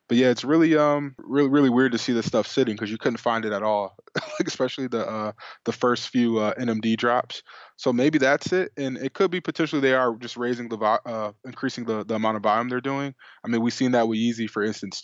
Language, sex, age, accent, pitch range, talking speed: English, male, 20-39, American, 110-125 Hz, 245 wpm